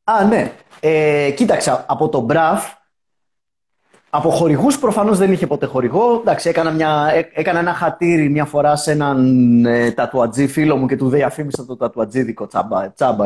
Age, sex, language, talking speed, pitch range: 30-49, male, Greek, 160 wpm, 140-205 Hz